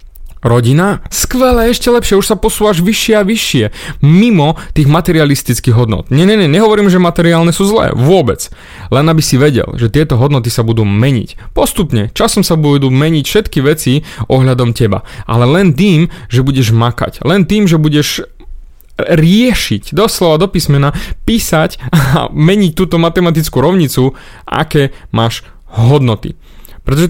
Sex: male